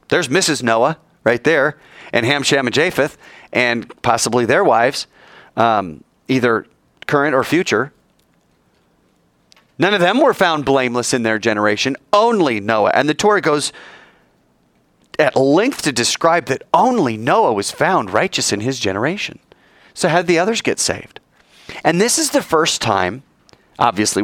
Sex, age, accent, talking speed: male, 30-49, American, 150 wpm